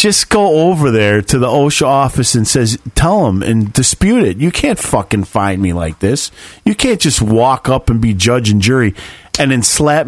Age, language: 40-59, English